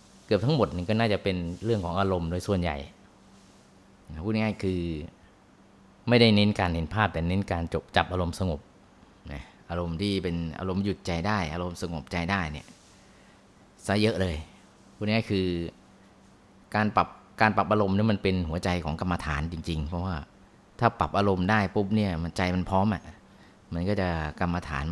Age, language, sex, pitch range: 30-49, Thai, male, 85-105 Hz